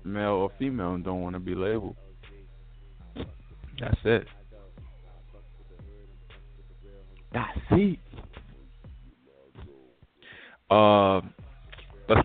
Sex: male